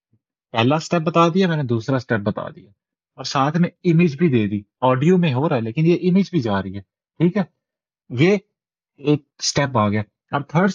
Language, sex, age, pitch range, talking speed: Urdu, male, 30-49, 125-160 Hz, 165 wpm